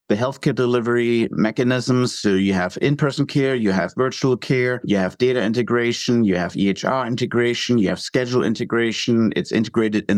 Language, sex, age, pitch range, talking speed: English, male, 50-69, 105-125 Hz, 165 wpm